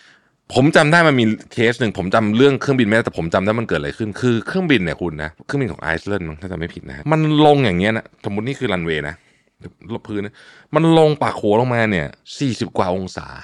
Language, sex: Thai, male